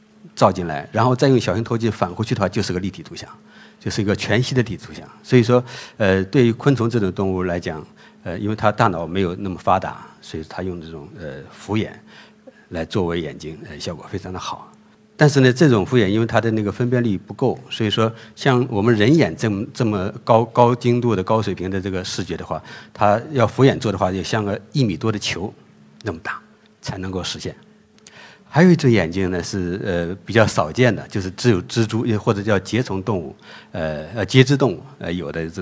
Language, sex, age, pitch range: Chinese, male, 50-69, 95-125 Hz